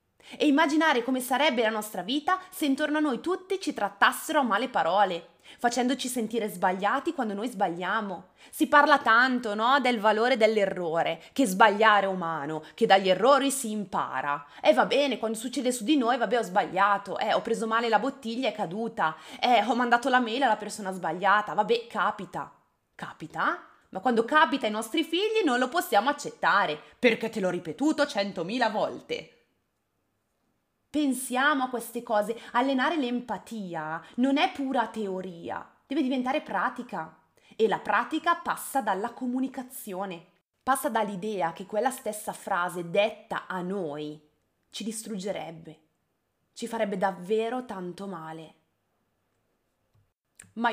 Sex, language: female, Italian